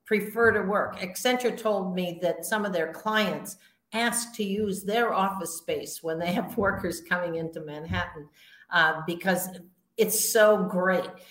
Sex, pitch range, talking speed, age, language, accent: female, 180-240 Hz, 155 wpm, 50-69, English, American